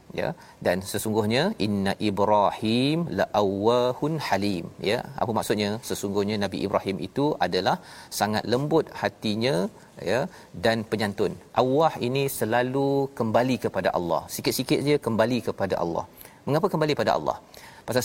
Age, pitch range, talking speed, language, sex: 40-59, 105-135 Hz, 125 wpm, Malayalam, male